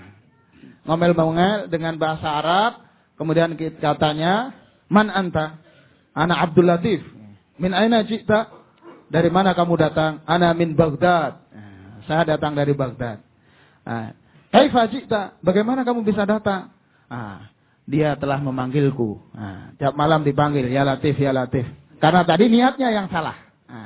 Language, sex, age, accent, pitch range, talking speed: English, male, 30-49, Indonesian, 140-180 Hz, 115 wpm